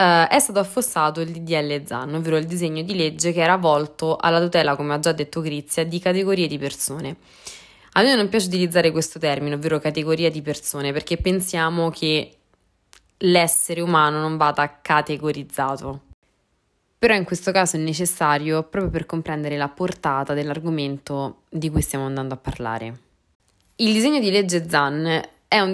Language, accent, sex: Italian, native, female